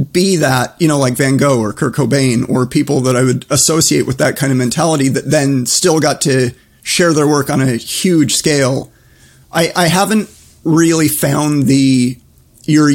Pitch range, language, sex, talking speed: 125-150 Hz, English, male, 185 wpm